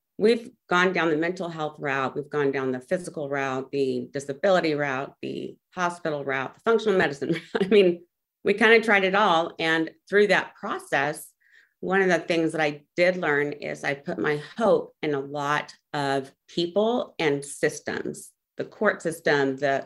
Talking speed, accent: 175 wpm, American